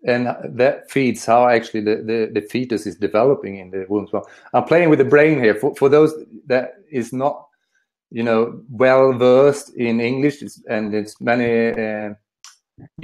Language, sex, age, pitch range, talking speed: Swedish, male, 40-59, 110-135 Hz, 180 wpm